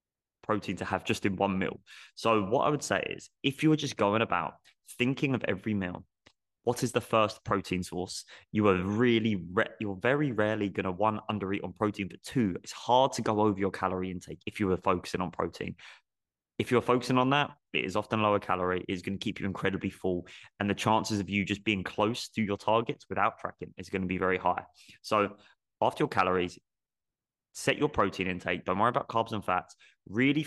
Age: 20-39